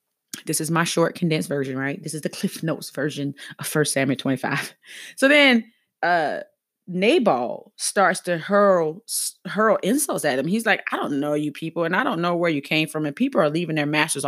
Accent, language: American, English